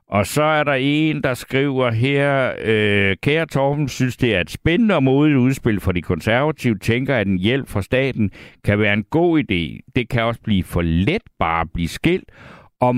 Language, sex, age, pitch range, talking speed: Danish, male, 60-79, 100-140 Hz, 205 wpm